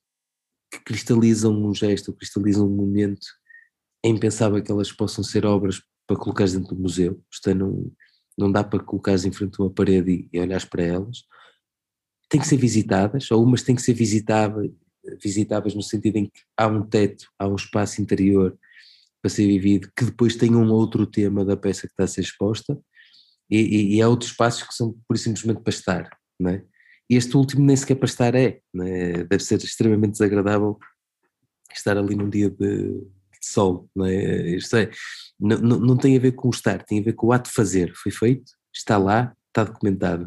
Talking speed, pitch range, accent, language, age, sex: 190 wpm, 100-120 Hz, Portuguese, Portuguese, 20-39, male